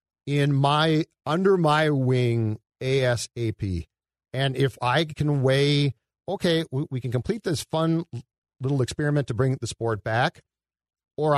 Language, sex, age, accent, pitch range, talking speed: English, male, 40-59, American, 110-145 Hz, 130 wpm